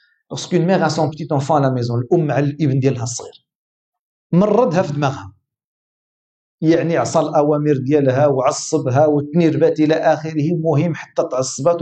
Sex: male